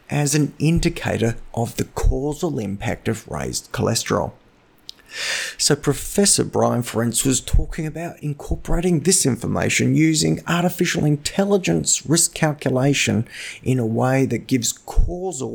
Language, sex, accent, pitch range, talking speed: English, male, Australian, 110-150 Hz, 120 wpm